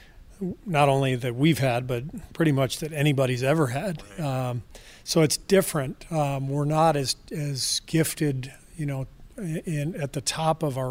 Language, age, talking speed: English, 40-59, 170 wpm